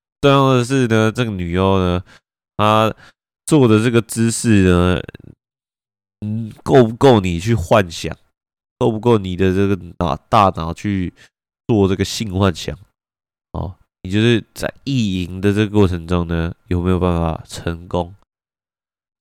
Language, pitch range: Chinese, 85-110 Hz